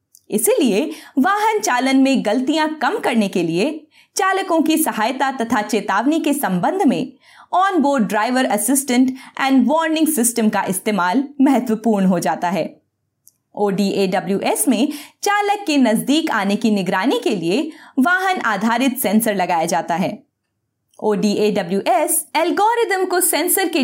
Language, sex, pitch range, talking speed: Hindi, female, 210-310 Hz, 120 wpm